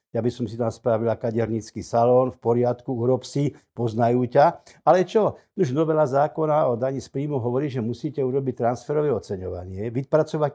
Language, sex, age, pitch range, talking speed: Slovak, male, 60-79, 115-150 Hz, 170 wpm